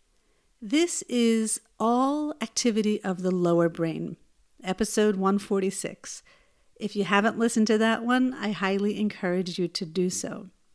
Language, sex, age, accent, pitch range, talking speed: English, female, 50-69, American, 190-235 Hz, 135 wpm